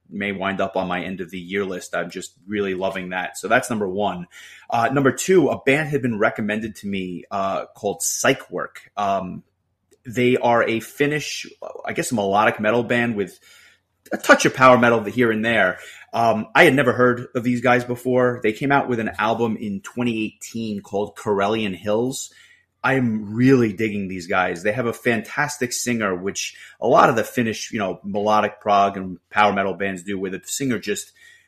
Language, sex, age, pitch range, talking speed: English, male, 30-49, 100-125 Hz, 190 wpm